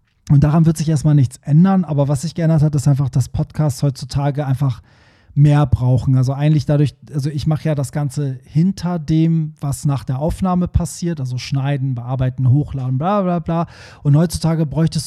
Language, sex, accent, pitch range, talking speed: German, male, German, 135-155 Hz, 185 wpm